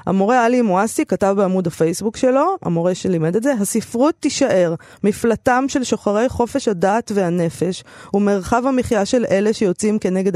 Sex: female